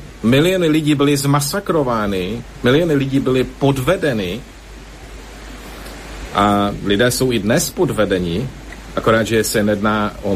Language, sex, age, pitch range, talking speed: Slovak, male, 50-69, 105-135 Hz, 110 wpm